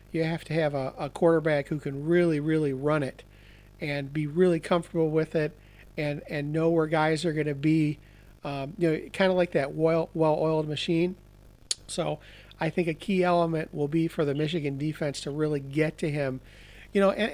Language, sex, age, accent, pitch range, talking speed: English, male, 40-59, American, 140-170 Hz, 205 wpm